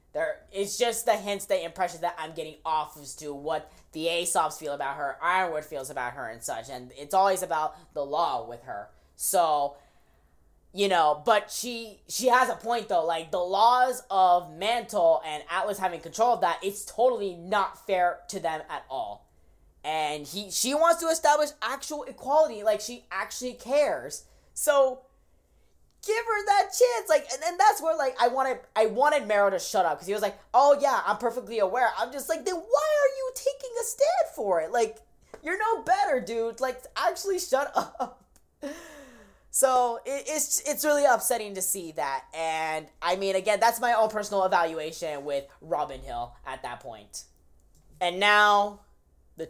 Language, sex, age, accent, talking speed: English, female, 10-29, American, 180 wpm